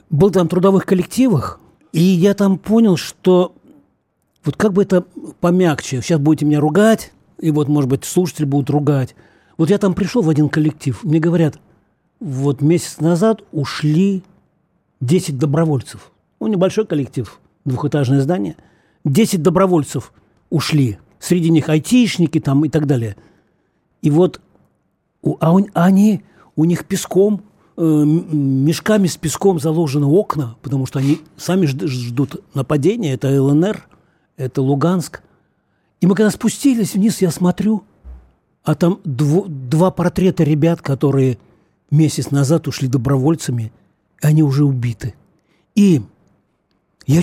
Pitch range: 145-185 Hz